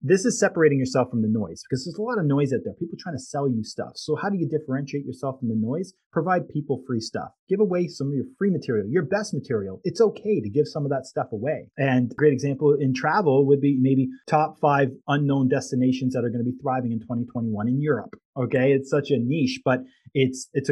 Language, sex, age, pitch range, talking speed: English, male, 30-49, 125-185 Hz, 240 wpm